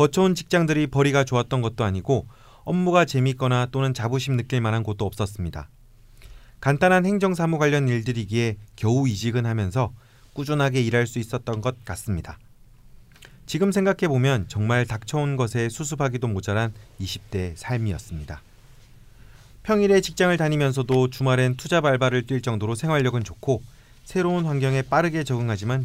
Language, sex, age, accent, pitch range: Korean, male, 40-59, native, 110-140 Hz